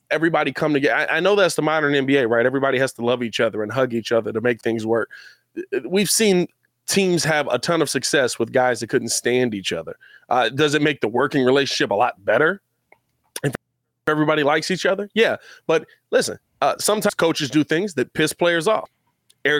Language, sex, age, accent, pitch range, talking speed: English, male, 20-39, American, 125-170 Hz, 205 wpm